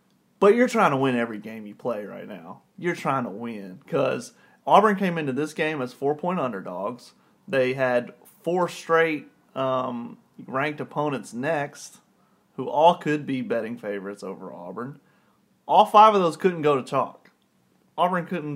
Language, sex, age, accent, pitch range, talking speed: English, male, 30-49, American, 130-170 Hz, 160 wpm